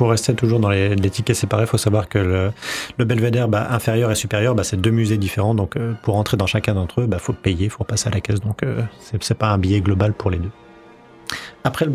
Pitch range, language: 105-125 Hz, French